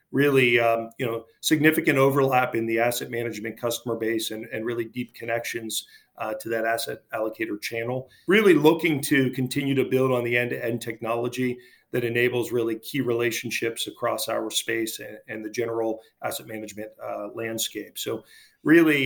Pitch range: 115-135 Hz